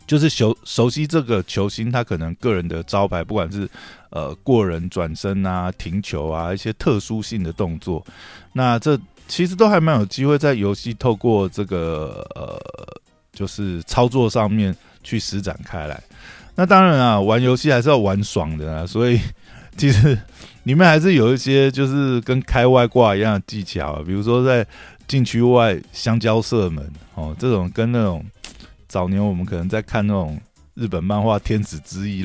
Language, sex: Chinese, male